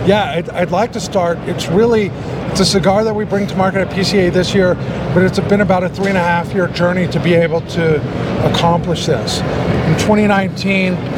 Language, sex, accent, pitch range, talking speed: English, male, American, 160-190 Hz, 210 wpm